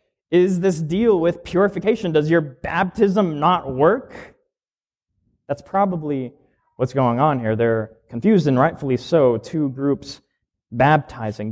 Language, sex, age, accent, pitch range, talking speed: English, male, 20-39, American, 130-195 Hz, 125 wpm